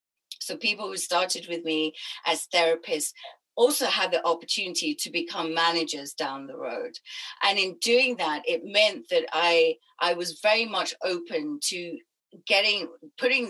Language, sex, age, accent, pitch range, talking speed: English, female, 40-59, British, 160-205 Hz, 150 wpm